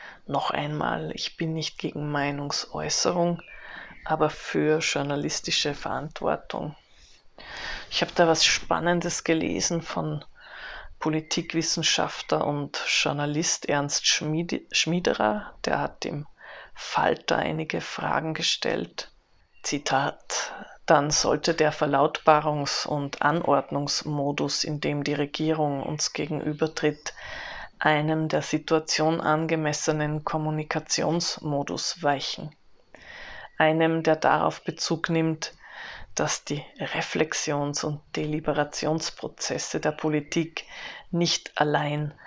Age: 20-39